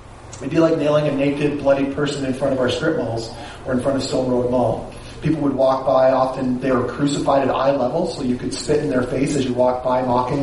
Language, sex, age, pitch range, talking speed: English, male, 30-49, 125-155 Hz, 255 wpm